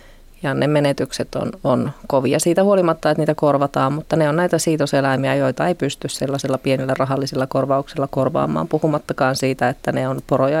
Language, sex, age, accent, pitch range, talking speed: Finnish, female, 30-49, native, 135-160 Hz, 170 wpm